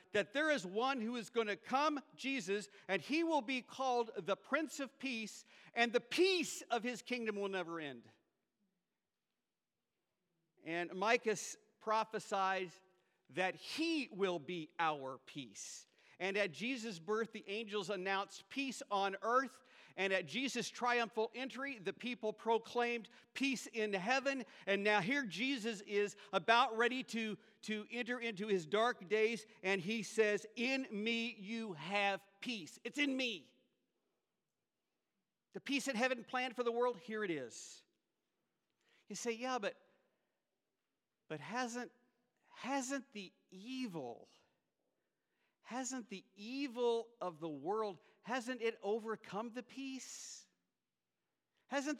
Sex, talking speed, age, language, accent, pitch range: male, 135 wpm, 50-69, English, American, 200-255 Hz